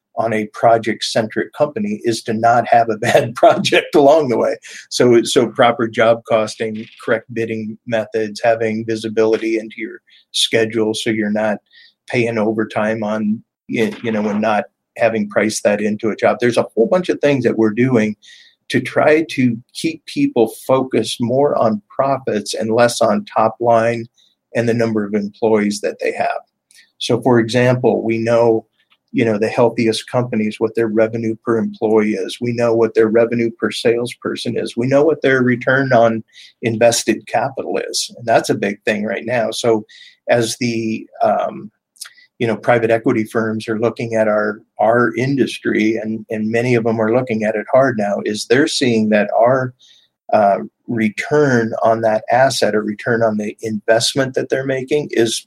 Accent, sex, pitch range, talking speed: American, male, 110-120 Hz, 175 wpm